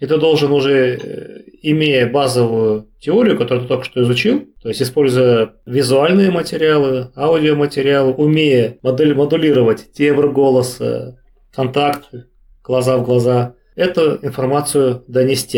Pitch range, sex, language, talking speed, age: 125-150 Hz, male, Russian, 115 wpm, 30-49